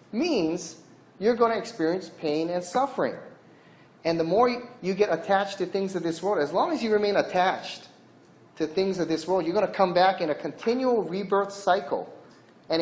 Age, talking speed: 30-49, 190 wpm